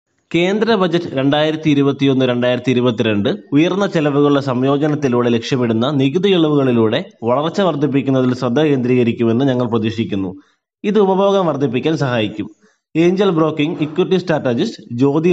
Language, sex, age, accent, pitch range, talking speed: Malayalam, male, 20-39, native, 125-165 Hz, 105 wpm